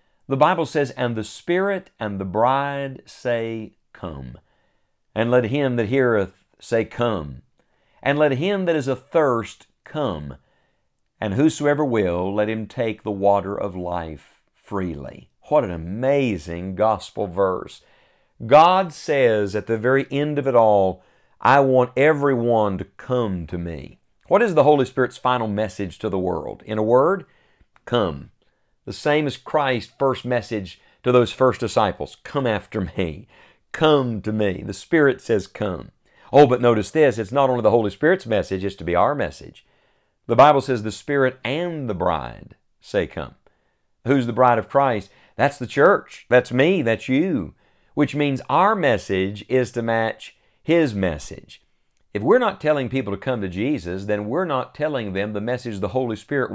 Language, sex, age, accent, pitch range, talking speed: English, male, 50-69, American, 100-135 Hz, 165 wpm